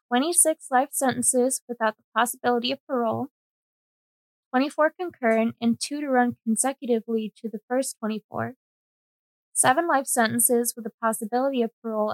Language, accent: English, American